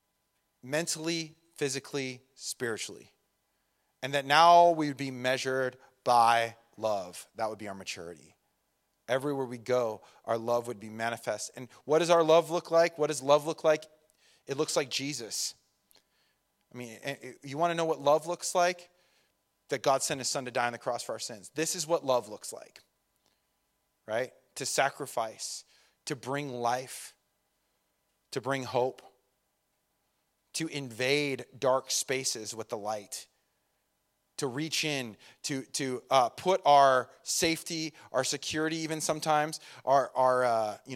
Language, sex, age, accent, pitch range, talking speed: English, male, 30-49, American, 125-155 Hz, 150 wpm